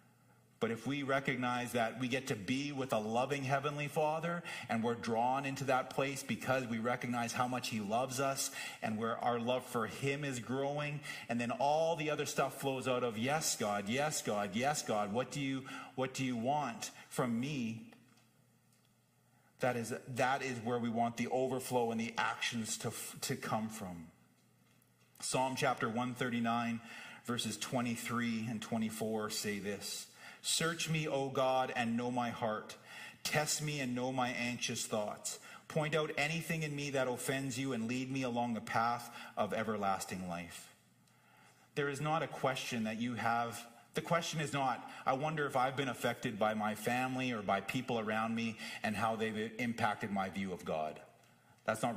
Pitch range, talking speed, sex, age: 115-135 Hz, 175 wpm, male, 40-59